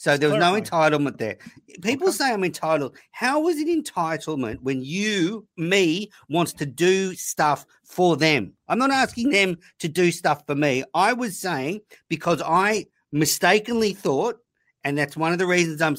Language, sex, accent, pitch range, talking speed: English, male, Australian, 135-195 Hz, 175 wpm